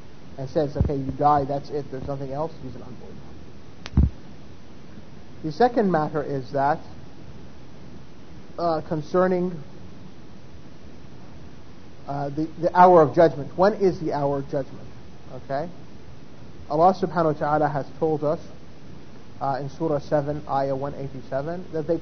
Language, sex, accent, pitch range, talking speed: English, male, American, 135-170 Hz, 135 wpm